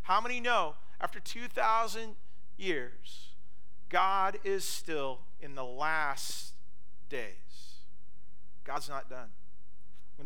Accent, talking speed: American, 100 wpm